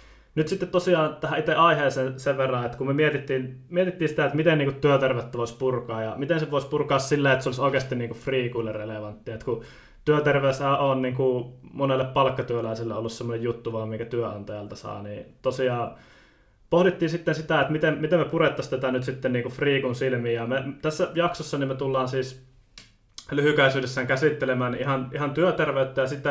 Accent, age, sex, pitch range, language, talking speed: native, 20-39, male, 120-150 Hz, Finnish, 170 wpm